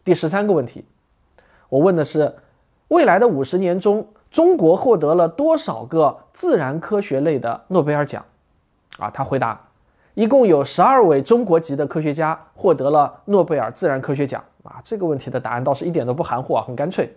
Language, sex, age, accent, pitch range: Chinese, male, 20-39, native, 140-200 Hz